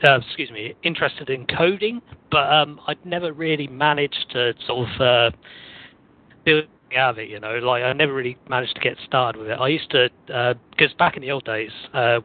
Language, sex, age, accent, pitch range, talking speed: English, male, 40-59, British, 120-140 Hz, 210 wpm